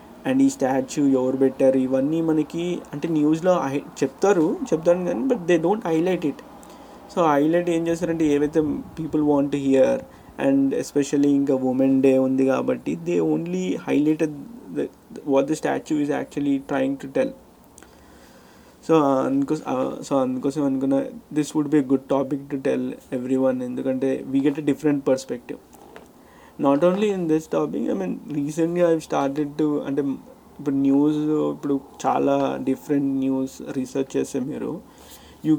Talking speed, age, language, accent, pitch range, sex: 145 wpm, 20-39, Telugu, native, 135-165 Hz, male